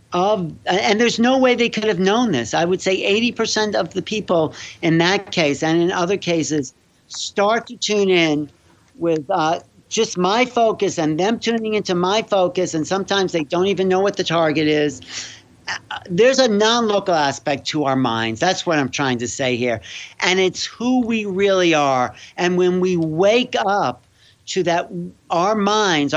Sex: male